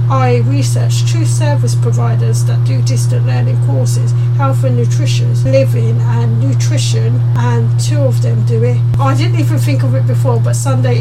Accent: British